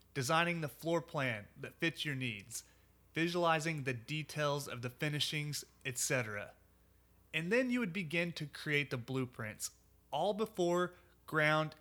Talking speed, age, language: 135 wpm, 30-49, English